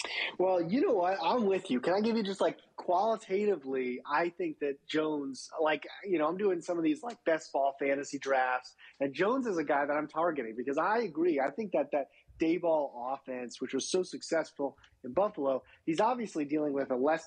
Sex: male